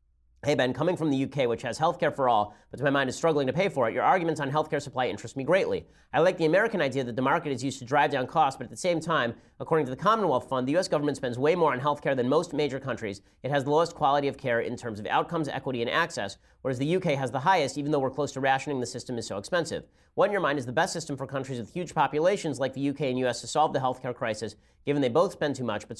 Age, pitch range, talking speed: 40-59, 120-155 Hz, 290 wpm